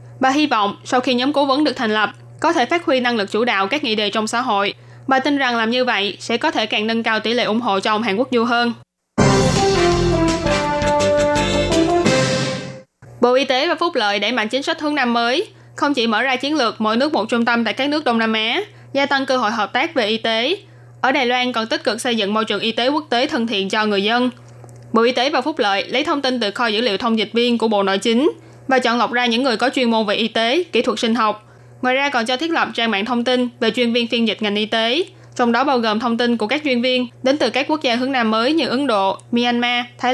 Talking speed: 270 wpm